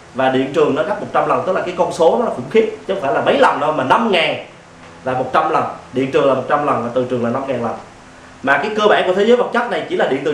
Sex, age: male, 20-39